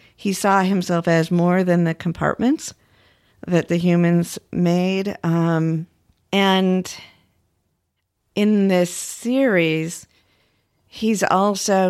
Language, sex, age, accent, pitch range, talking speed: English, female, 50-69, American, 155-185 Hz, 95 wpm